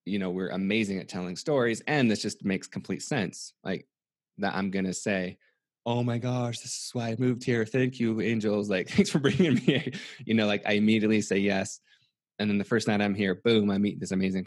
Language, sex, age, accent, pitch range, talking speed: English, male, 20-39, American, 95-105 Hz, 230 wpm